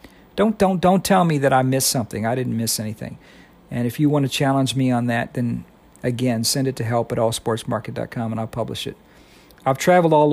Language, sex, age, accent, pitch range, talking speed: English, male, 50-69, American, 120-145 Hz, 215 wpm